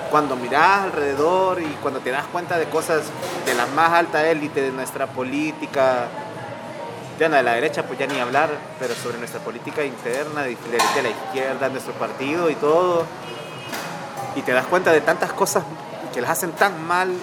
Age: 30-49